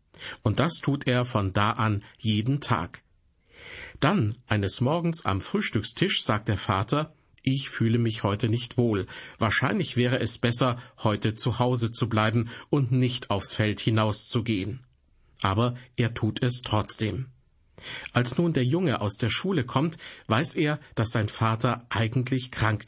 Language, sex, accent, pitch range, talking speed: German, male, German, 110-135 Hz, 150 wpm